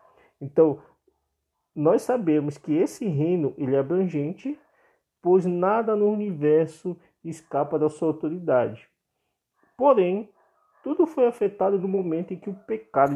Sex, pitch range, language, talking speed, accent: male, 155-220 Hz, Portuguese, 120 wpm, Brazilian